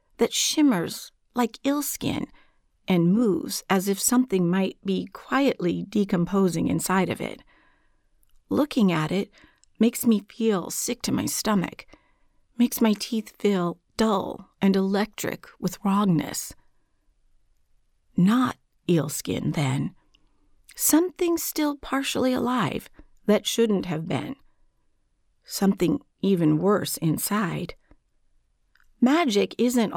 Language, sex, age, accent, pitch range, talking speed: English, female, 50-69, American, 180-230 Hz, 105 wpm